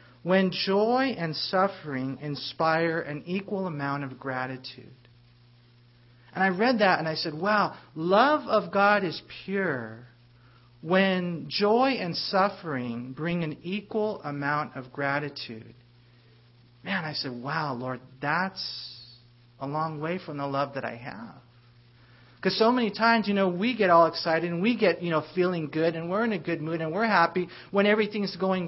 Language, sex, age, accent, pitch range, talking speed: English, male, 40-59, American, 130-200 Hz, 160 wpm